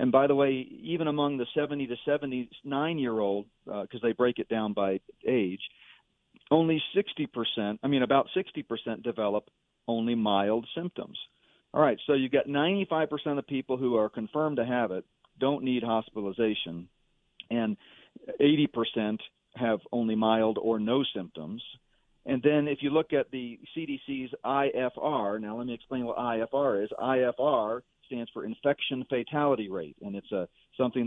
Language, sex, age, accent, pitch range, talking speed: English, male, 40-59, American, 110-140 Hz, 165 wpm